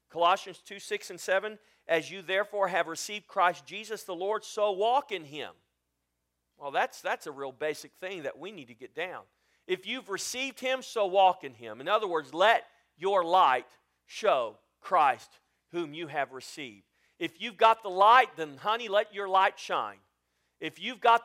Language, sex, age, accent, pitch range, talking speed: English, male, 40-59, American, 130-210 Hz, 185 wpm